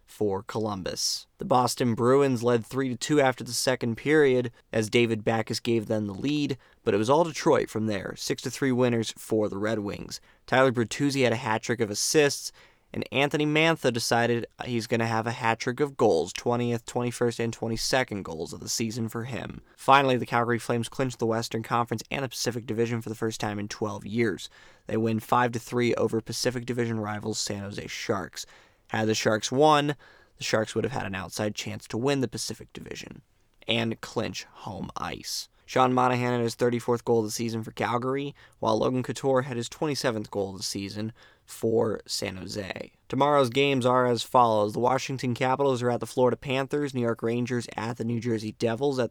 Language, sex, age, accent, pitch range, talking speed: English, male, 20-39, American, 110-130 Hz, 190 wpm